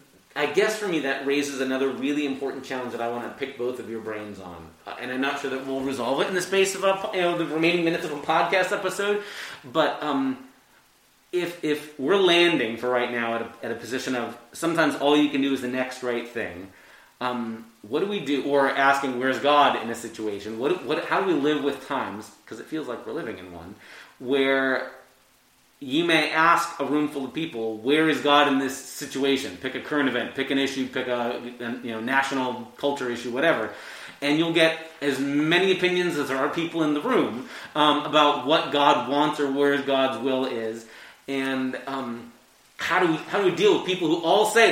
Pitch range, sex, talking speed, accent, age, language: 130-165 Hz, male, 210 wpm, American, 30-49, English